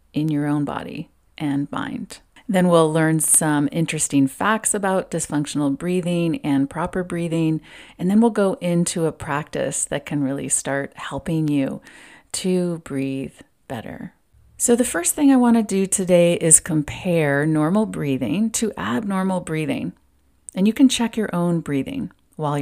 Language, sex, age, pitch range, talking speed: English, female, 40-59, 145-195 Hz, 150 wpm